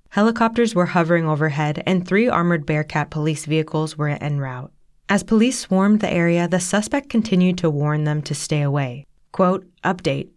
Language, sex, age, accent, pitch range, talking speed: English, female, 20-39, American, 155-200 Hz, 170 wpm